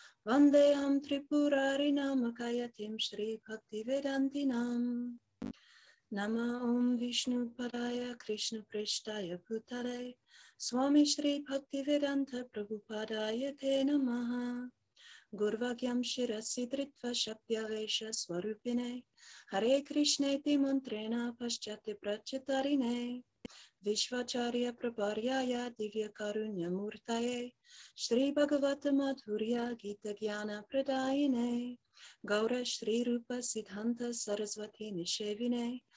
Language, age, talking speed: English, 30-49, 75 wpm